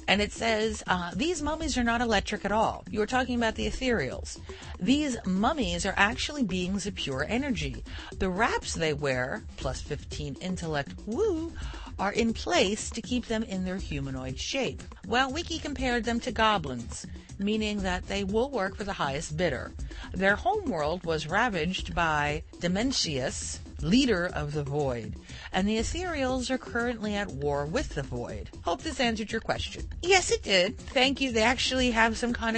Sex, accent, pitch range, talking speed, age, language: female, American, 155-240 Hz, 170 wpm, 50-69, English